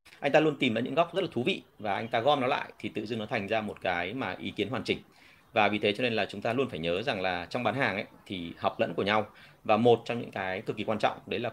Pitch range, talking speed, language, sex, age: 110-155 Hz, 330 wpm, Vietnamese, male, 30-49